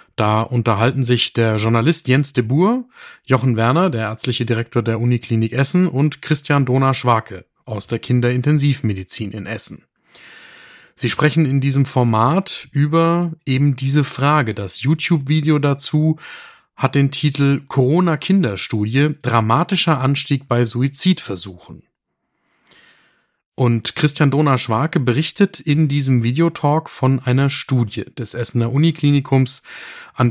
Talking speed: 115 wpm